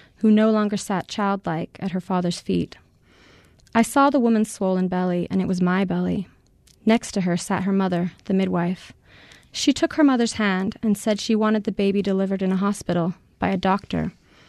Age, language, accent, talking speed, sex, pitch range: 30-49, English, American, 190 wpm, female, 180-210 Hz